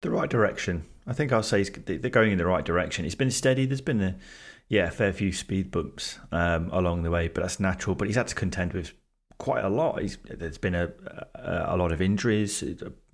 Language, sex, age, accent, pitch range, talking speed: English, male, 30-49, British, 90-100 Hz, 235 wpm